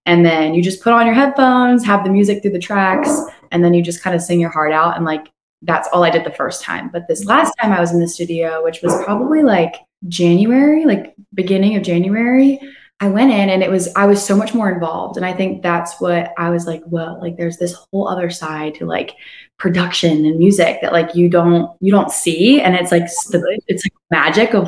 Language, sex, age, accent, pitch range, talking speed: English, female, 20-39, American, 165-200 Hz, 235 wpm